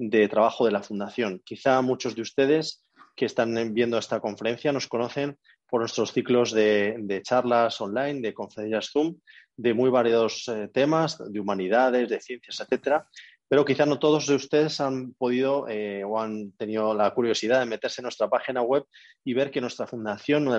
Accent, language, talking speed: Spanish, Spanish, 185 wpm